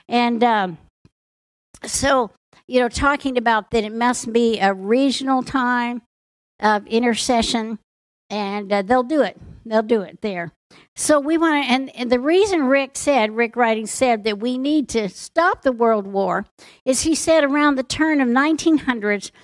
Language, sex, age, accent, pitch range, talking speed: English, female, 60-79, American, 220-275 Hz, 165 wpm